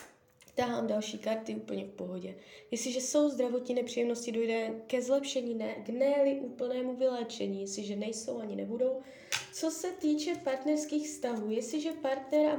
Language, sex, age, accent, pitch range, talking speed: Czech, female, 20-39, native, 205-255 Hz, 140 wpm